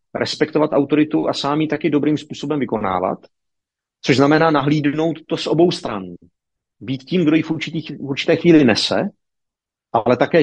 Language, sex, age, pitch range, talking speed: Czech, male, 40-59, 135-155 Hz, 160 wpm